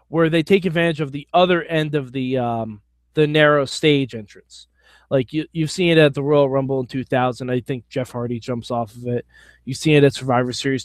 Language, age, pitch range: English, 20-39, 130-200 Hz